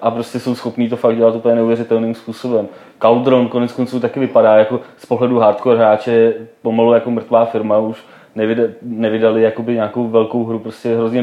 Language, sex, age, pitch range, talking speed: Czech, male, 20-39, 110-120 Hz, 170 wpm